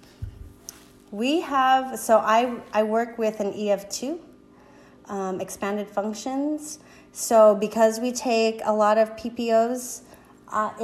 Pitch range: 205-265 Hz